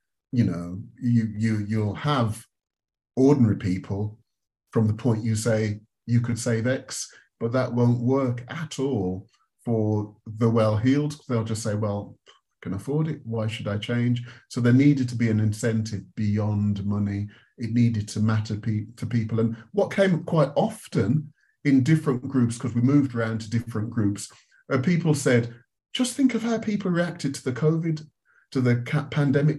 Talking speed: 170 wpm